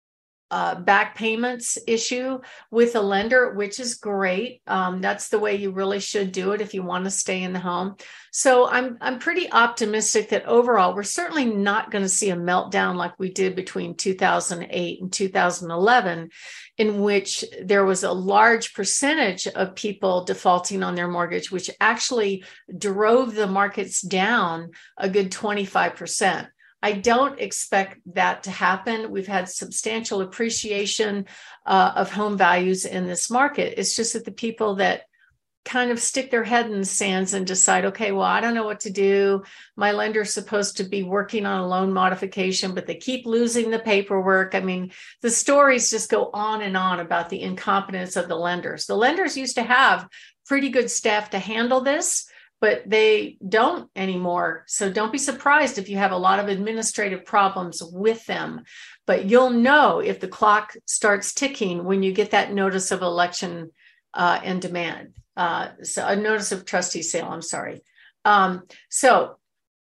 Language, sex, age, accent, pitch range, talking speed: English, female, 50-69, American, 190-225 Hz, 175 wpm